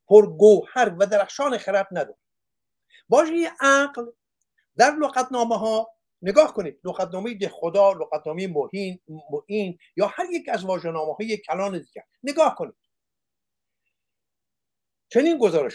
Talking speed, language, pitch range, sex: 105 wpm, Persian, 190-245 Hz, male